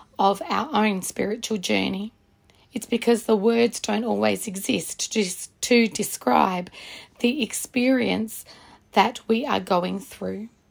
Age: 40-59